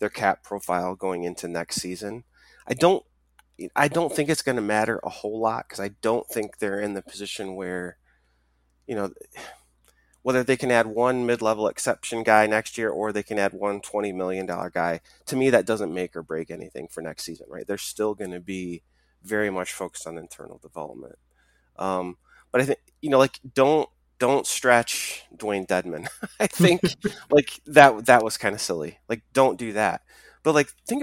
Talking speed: 190 wpm